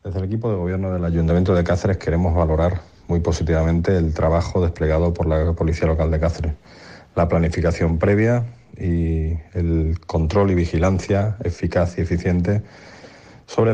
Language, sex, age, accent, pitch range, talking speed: Spanish, male, 40-59, Spanish, 90-140 Hz, 150 wpm